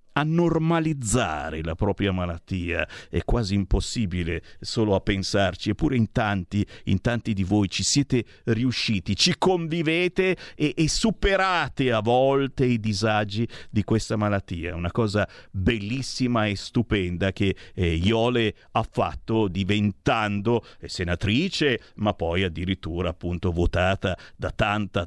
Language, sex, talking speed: Italian, male, 125 wpm